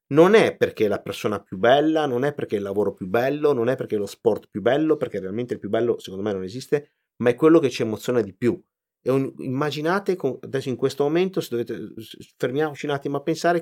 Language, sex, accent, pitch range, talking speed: Italian, male, native, 110-145 Hz, 245 wpm